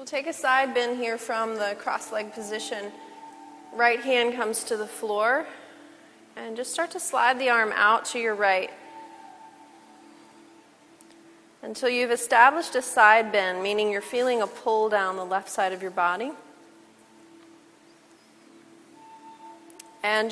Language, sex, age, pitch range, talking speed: English, female, 30-49, 210-255 Hz, 140 wpm